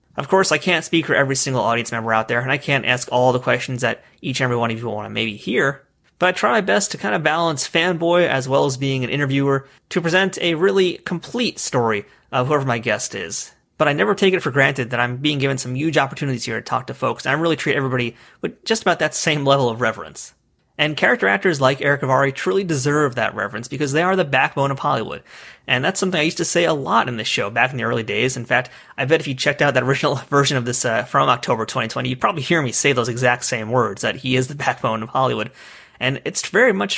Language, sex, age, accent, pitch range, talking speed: English, male, 30-49, American, 125-165 Hz, 260 wpm